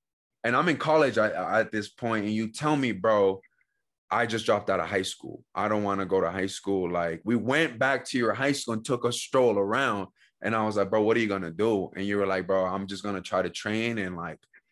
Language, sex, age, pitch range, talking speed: English, male, 20-39, 105-125 Hz, 275 wpm